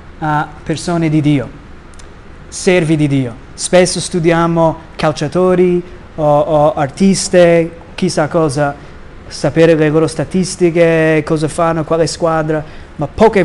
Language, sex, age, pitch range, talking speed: Italian, male, 20-39, 150-180 Hz, 110 wpm